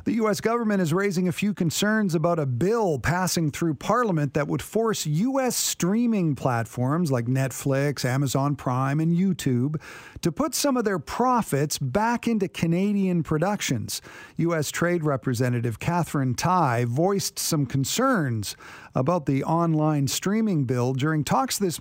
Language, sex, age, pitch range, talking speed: English, male, 50-69, 140-195 Hz, 145 wpm